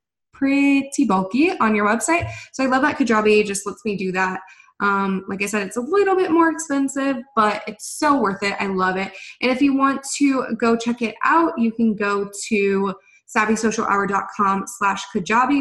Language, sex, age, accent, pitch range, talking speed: English, female, 20-39, American, 195-265 Hz, 190 wpm